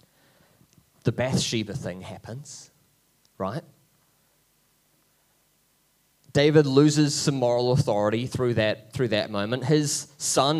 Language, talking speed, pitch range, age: English, 95 wpm, 130-160 Hz, 20-39